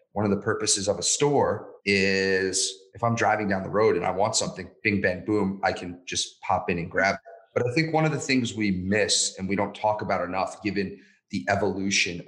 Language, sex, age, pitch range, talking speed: English, male, 30-49, 95-115 Hz, 230 wpm